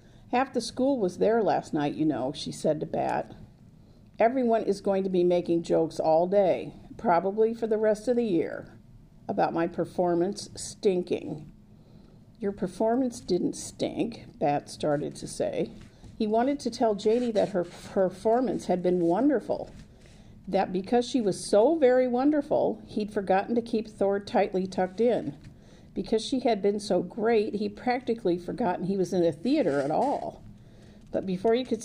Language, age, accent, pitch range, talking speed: English, 50-69, American, 175-225 Hz, 165 wpm